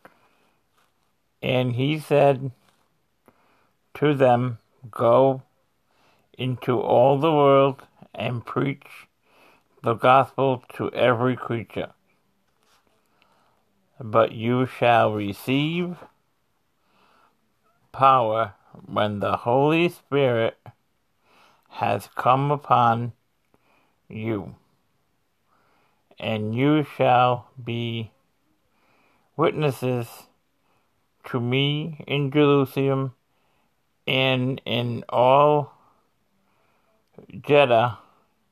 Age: 50-69